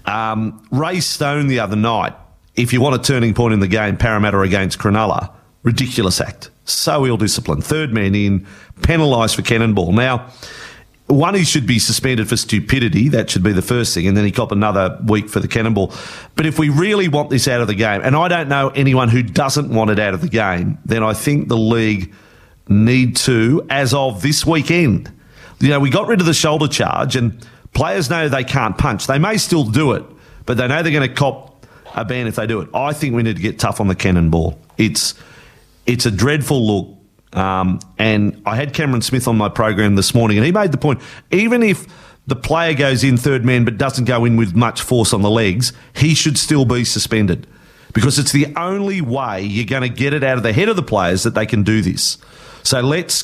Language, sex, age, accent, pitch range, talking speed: English, male, 40-59, Australian, 105-145 Hz, 220 wpm